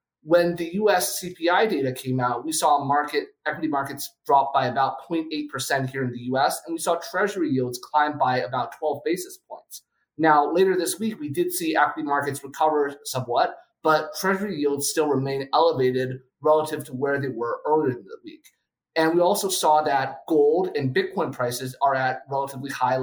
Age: 30-49